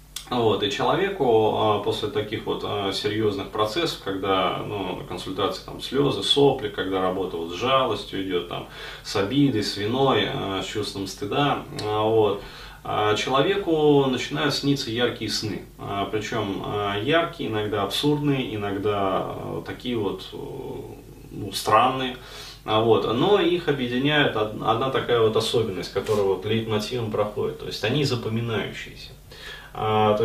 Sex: male